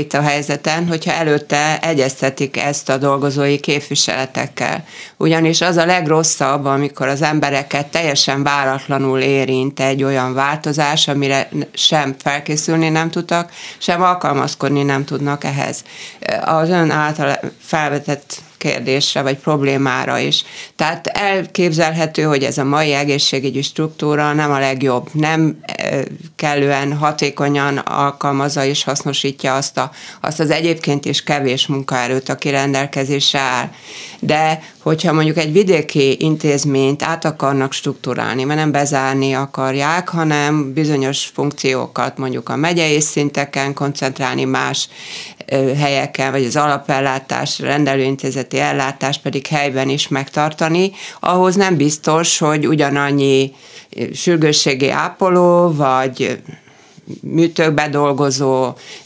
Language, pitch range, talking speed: Hungarian, 135-155 Hz, 110 wpm